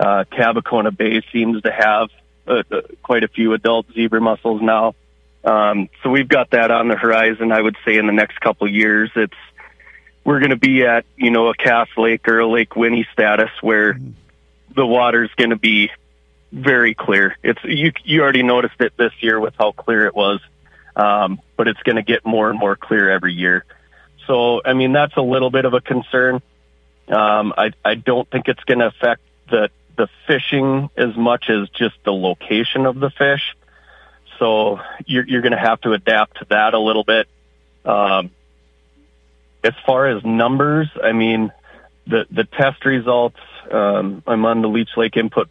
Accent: American